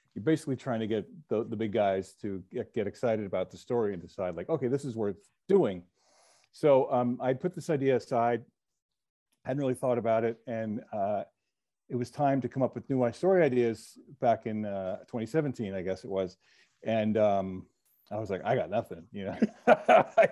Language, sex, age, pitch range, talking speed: English, male, 40-59, 110-150 Hz, 200 wpm